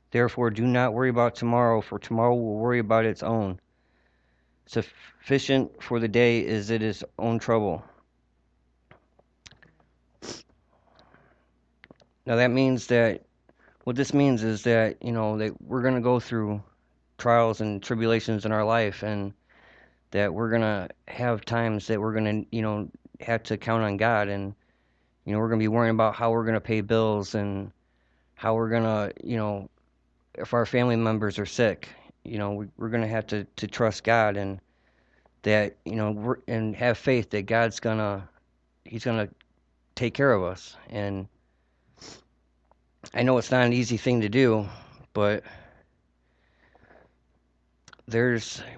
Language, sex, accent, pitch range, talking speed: English, male, American, 95-115 Hz, 160 wpm